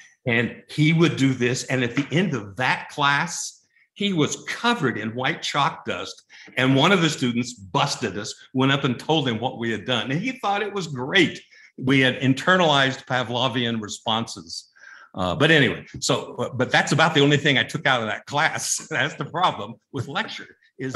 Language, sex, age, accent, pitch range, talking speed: English, male, 60-79, American, 115-145 Hz, 200 wpm